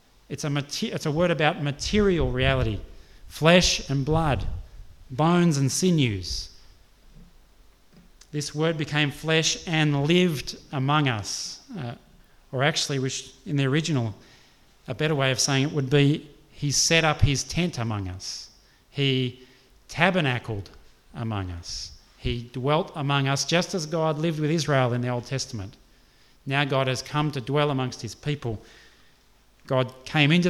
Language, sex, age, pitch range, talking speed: English, male, 30-49, 120-150 Hz, 140 wpm